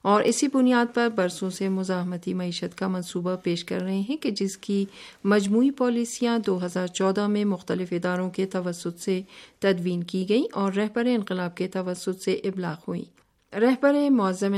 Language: Urdu